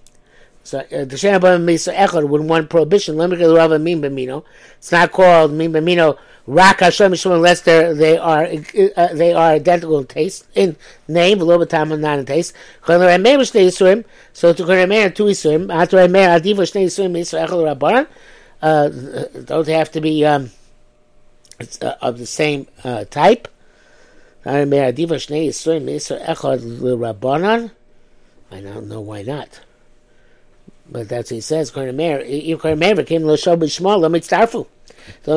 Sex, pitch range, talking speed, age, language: male, 150-185 Hz, 125 wpm, 60-79, English